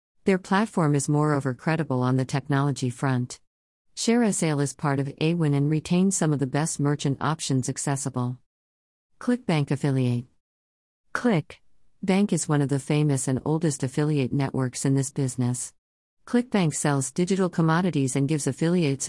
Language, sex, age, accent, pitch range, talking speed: English, female, 50-69, American, 130-160 Hz, 145 wpm